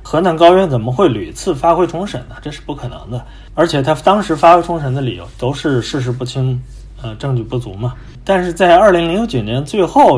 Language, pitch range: Chinese, 125-170 Hz